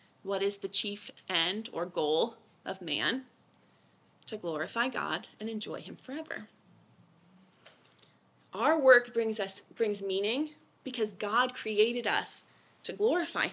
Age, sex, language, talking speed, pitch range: 30-49, female, English, 125 wpm, 215-270 Hz